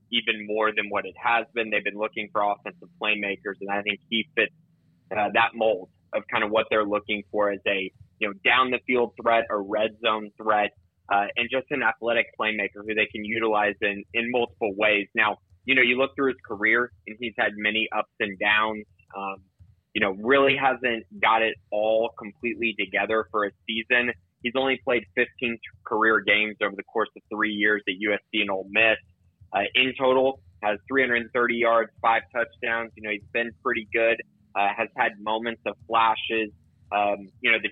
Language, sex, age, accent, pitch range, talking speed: English, male, 20-39, American, 105-115 Hz, 195 wpm